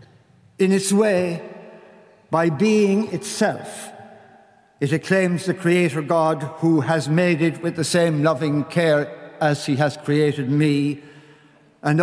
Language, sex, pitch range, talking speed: English, male, 155-205 Hz, 130 wpm